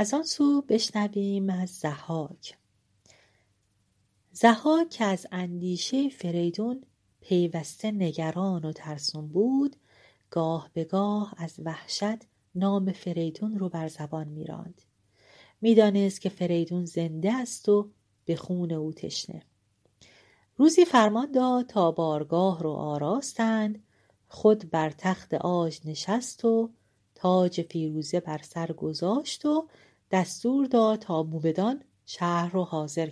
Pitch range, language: 155-225 Hz, Persian